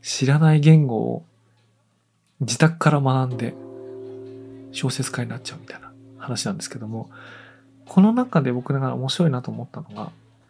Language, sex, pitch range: Japanese, male, 130-175 Hz